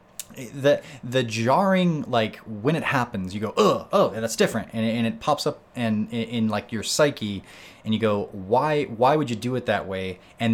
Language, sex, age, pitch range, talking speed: English, male, 20-39, 105-125 Hz, 205 wpm